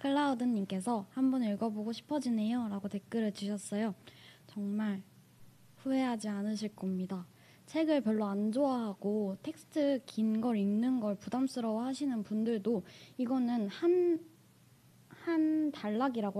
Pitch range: 200-255 Hz